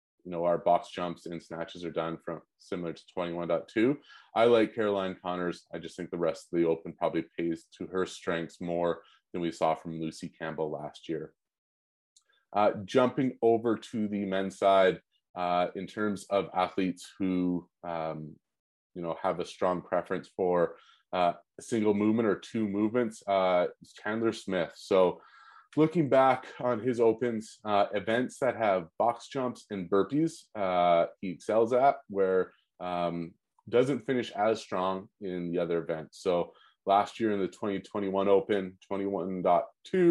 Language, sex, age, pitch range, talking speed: English, male, 30-49, 85-105 Hz, 155 wpm